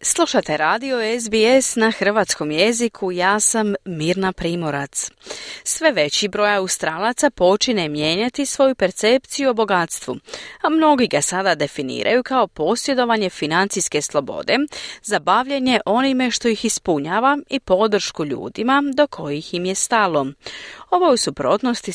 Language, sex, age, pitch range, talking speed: Croatian, female, 40-59, 160-240 Hz, 125 wpm